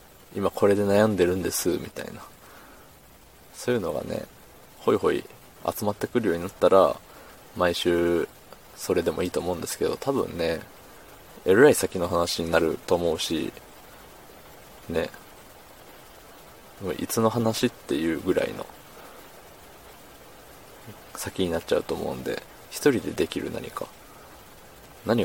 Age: 20-39